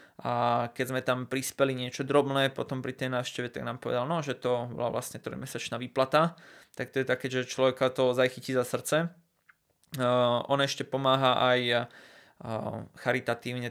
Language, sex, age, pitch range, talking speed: Slovak, male, 20-39, 125-140 Hz, 165 wpm